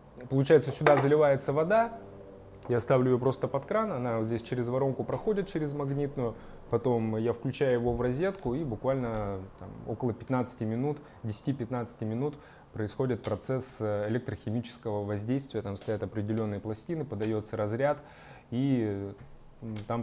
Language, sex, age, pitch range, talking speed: Russian, male, 20-39, 110-135 Hz, 130 wpm